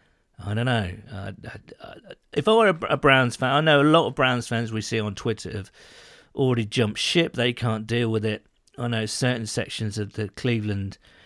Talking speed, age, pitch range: 215 wpm, 40-59, 100-130 Hz